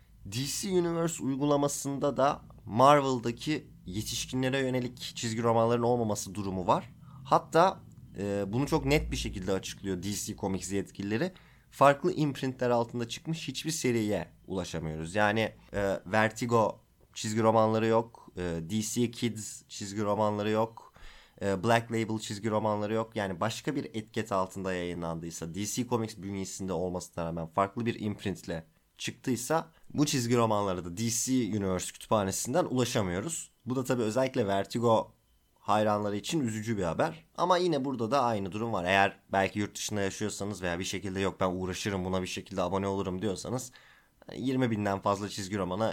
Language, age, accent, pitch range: Turkish, 30-49, native, 100-130 Hz